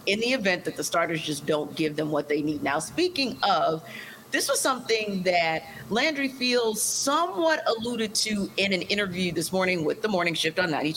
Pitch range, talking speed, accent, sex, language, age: 160-215 Hz, 195 wpm, American, female, English, 40-59